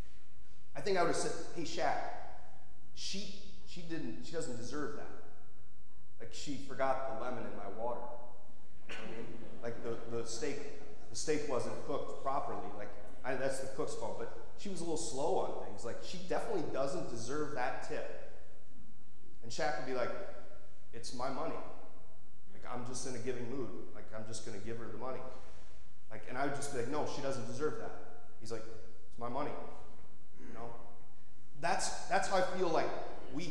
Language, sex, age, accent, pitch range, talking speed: English, male, 30-49, American, 110-150 Hz, 185 wpm